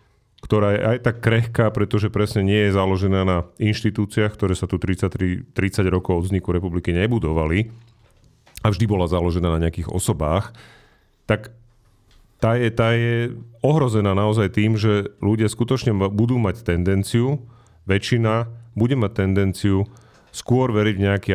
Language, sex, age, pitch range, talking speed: Slovak, male, 40-59, 90-115 Hz, 140 wpm